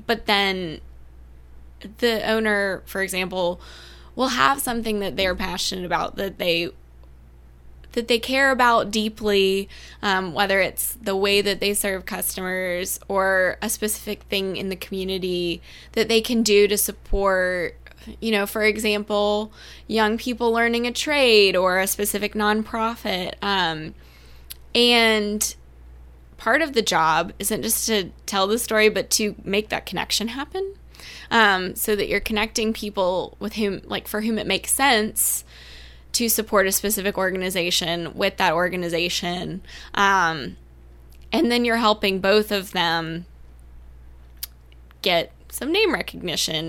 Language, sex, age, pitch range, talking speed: English, female, 10-29, 170-215 Hz, 140 wpm